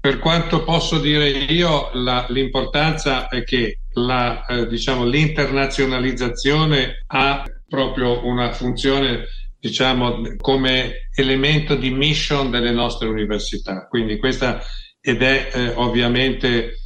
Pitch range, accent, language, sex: 115-130 Hz, native, Italian, male